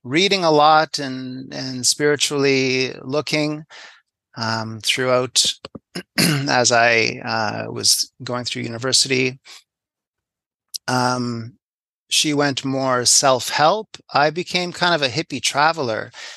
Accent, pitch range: American, 115-145 Hz